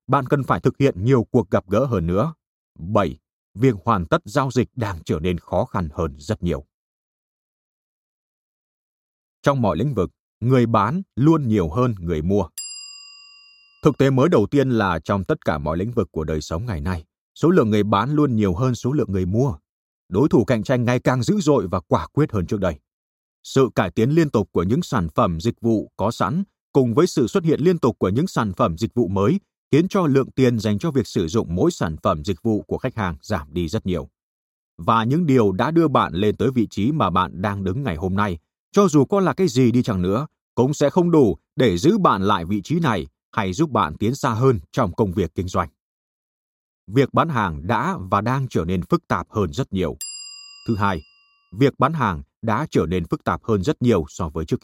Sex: male